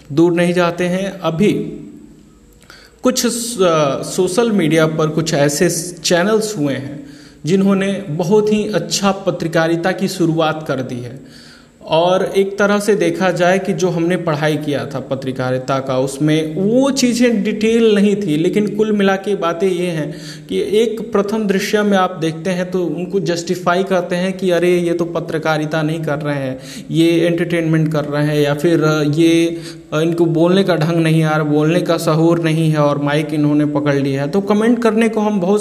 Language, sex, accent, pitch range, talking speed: Hindi, male, native, 155-200 Hz, 175 wpm